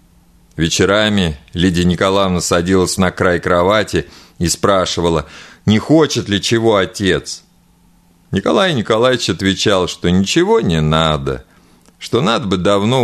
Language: Russian